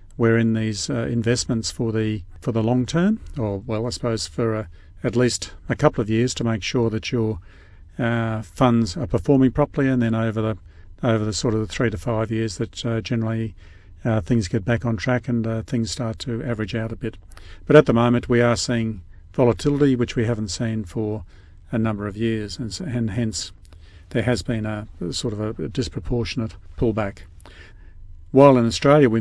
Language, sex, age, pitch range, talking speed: English, male, 50-69, 105-120 Hz, 200 wpm